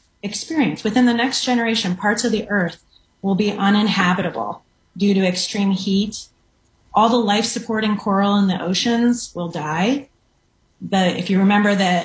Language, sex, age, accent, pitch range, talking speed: English, female, 30-49, American, 180-215 Hz, 150 wpm